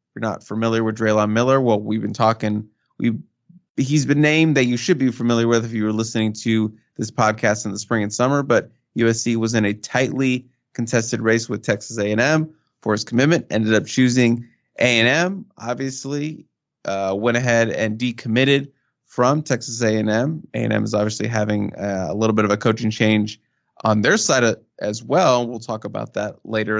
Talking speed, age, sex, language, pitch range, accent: 185 wpm, 20-39, male, English, 115-140 Hz, American